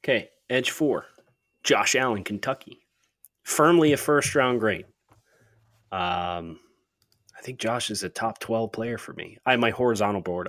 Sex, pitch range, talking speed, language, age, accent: male, 95-115 Hz, 155 wpm, English, 20-39, American